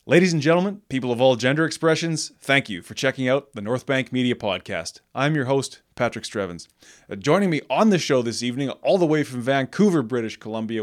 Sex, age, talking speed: male, 20-39, 210 wpm